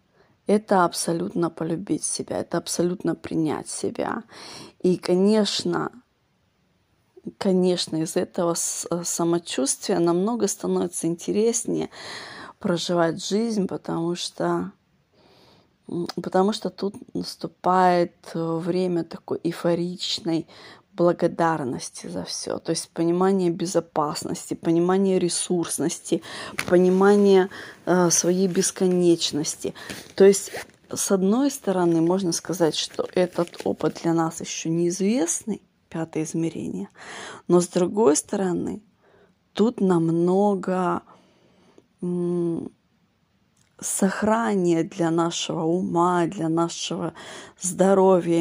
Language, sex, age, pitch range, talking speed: Russian, female, 20-39, 165-190 Hz, 85 wpm